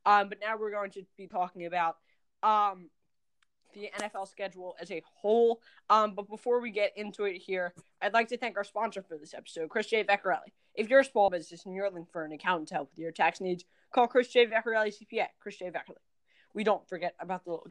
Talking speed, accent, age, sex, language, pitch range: 225 wpm, American, 20-39, female, English, 180-205 Hz